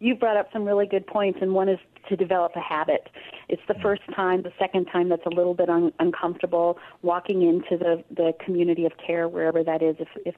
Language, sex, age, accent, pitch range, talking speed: English, female, 40-59, American, 165-200 Hz, 225 wpm